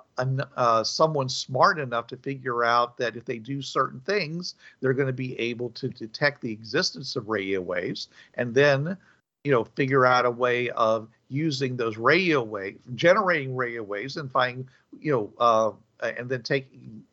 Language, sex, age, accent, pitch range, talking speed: English, male, 50-69, American, 120-150 Hz, 175 wpm